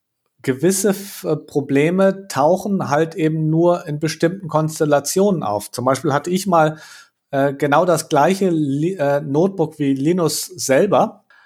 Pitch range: 145-175 Hz